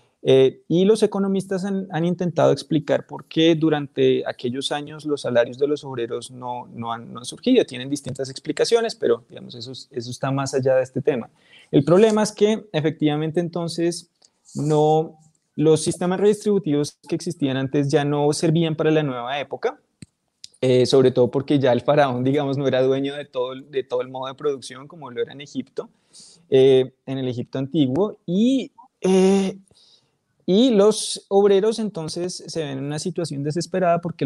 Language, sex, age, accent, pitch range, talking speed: Spanish, male, 20-39, Colombian, 135-180 Hz, 175 wpm